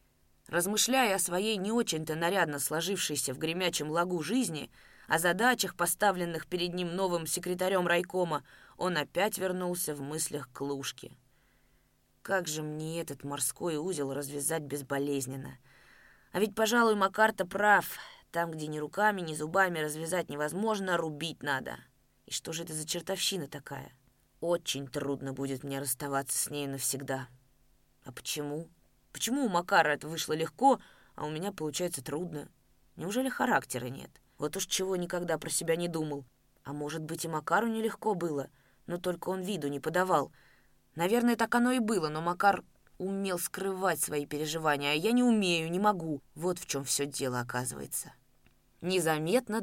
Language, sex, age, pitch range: Russian, female, 20-39, 145-190 Hz